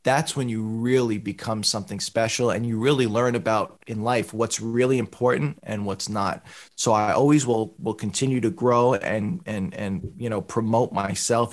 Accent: American